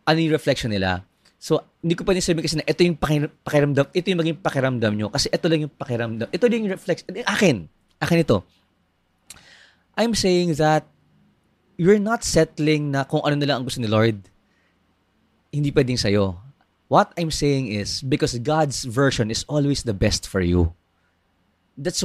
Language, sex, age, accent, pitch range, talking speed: Filipino, male, 20-39, native, 105-170 Hz, 175 wpm